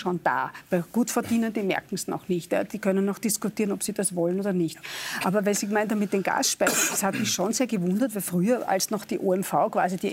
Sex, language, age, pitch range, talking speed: female, German, 50-69, 190-225 Hz, 235 wpm